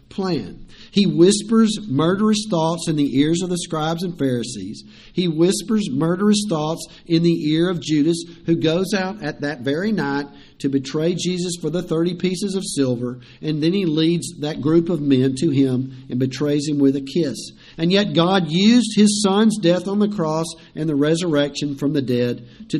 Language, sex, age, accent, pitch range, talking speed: English, male, 50-69, American, 135-185 Hz, 185 wpm